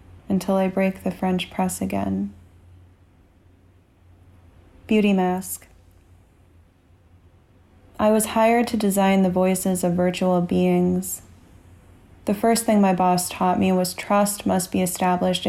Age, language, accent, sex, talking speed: 20-39, English, American, female, 120 wpm